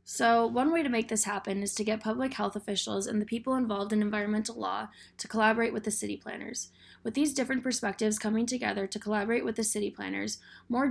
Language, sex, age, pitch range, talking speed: English, female, 10-29, 210-235 Hz, 215 wpm